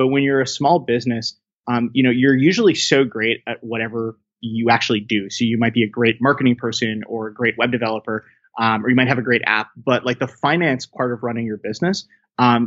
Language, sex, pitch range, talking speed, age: English, male, 115-130 Hz, 230 wpm, 20-39